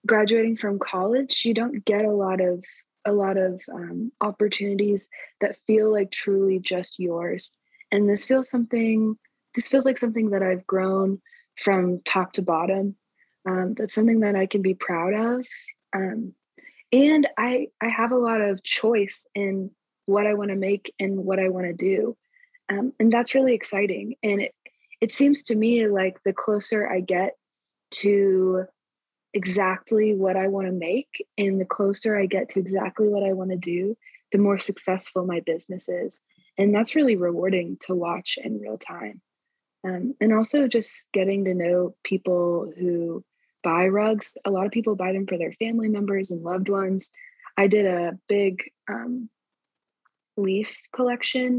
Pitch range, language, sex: 190-225 Hz, English, female